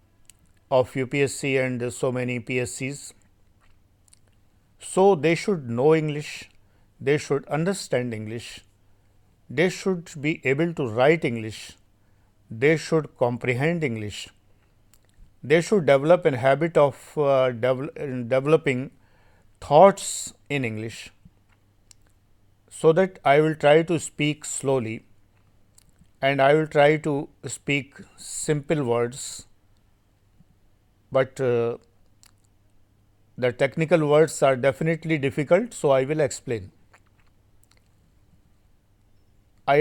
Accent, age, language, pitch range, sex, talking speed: native, 50-69, Hindi, 100-150 Hz, male, 100 wpm